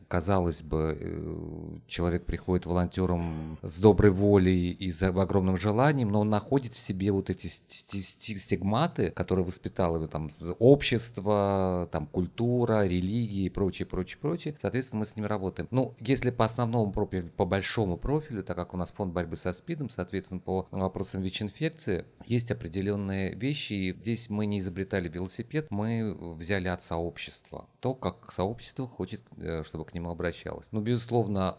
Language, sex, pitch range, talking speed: Russian, male, 90-115 Hz, 150 wpm